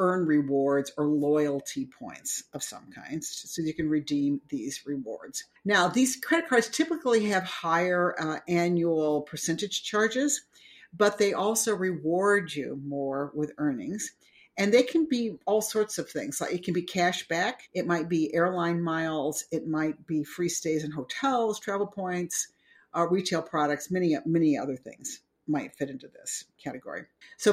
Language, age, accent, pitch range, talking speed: English, 50-69, American, 155-215 Hz, 160 wpm